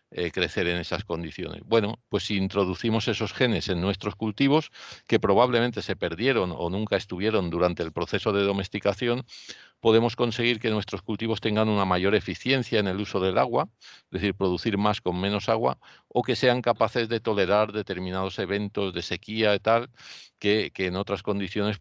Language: Spanish